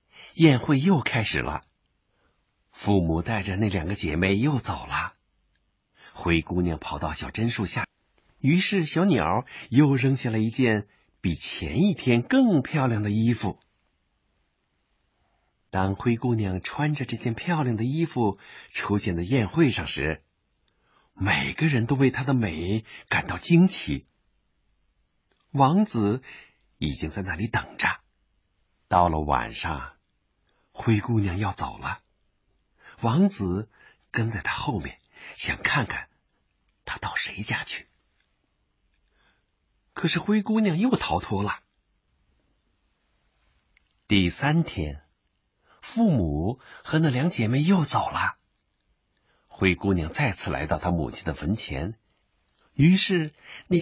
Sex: male